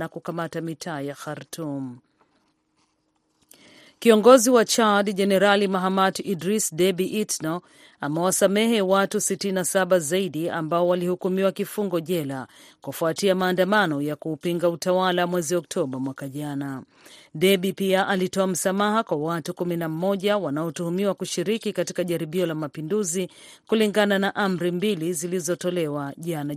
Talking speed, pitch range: 110 wpm, 165-200 Hz